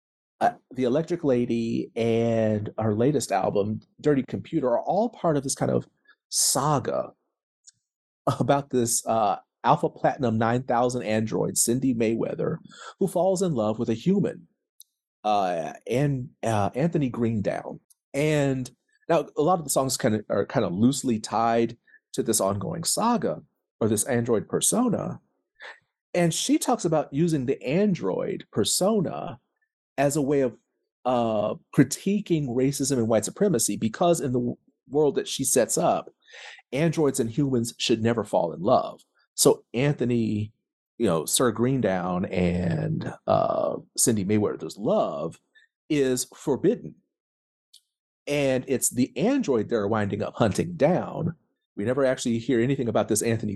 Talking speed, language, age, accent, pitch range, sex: 140 wpm, English, 40-59, American, 115-150 Hz, male